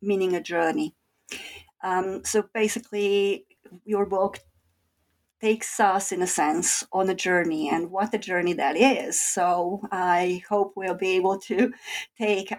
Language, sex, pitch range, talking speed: English, female, 185-220 Hz, 145 wpm